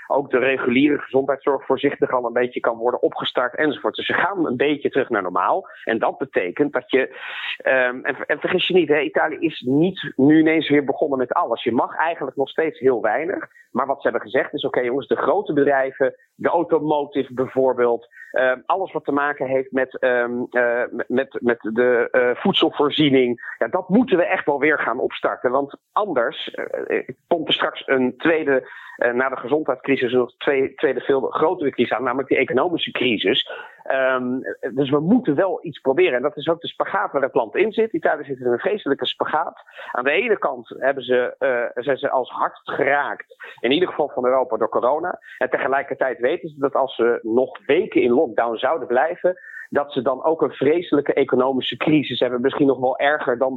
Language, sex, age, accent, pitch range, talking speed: Dutch, male, 40-59, Dutch, 130-180 Hz, 195 wpm